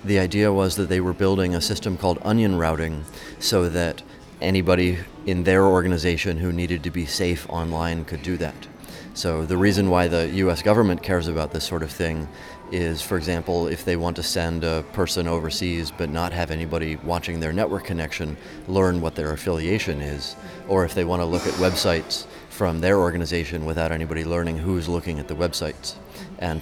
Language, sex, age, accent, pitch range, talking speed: English, male, 30-49, American, 80-90 Hz, 190 wpm